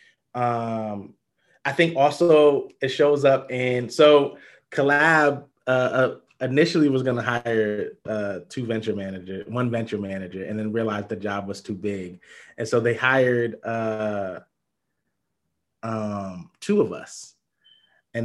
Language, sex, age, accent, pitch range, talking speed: English, male, 20-39, American, 105-130 Hz, 140 wpm